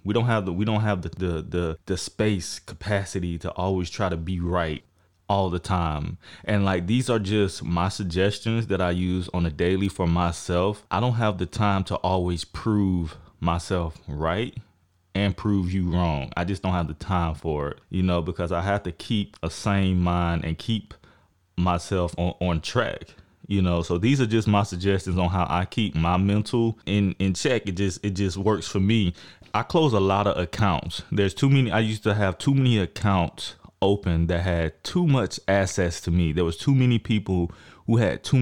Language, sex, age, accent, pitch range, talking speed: English, male, 20-39, American, 90-105 Hz, 205 wpm